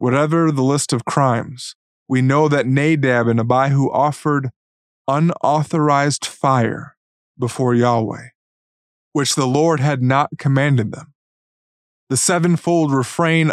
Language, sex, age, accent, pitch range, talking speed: English, male, 20-39, American, 125-150 Hz, 115 wpm